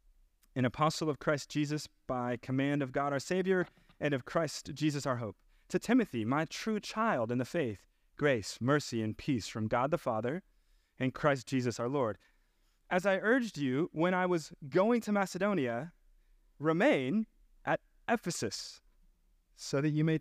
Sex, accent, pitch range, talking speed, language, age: male, American, 115-160 Hz, 165 wpm, English, 30-49